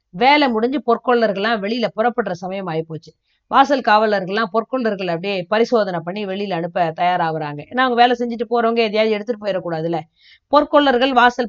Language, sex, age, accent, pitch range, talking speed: Tamil, female, 20-39, native, 180-245 Hz, 135 wpm